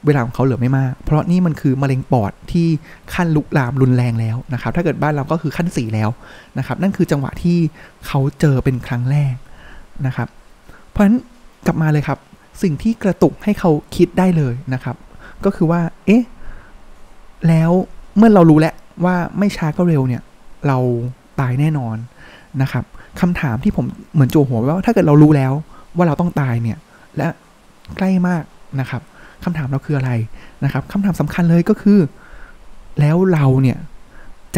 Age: 20-39